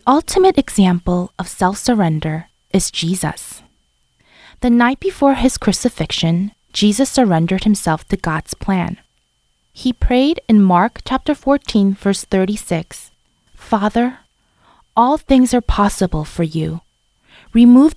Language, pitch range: English, 170-230 Hz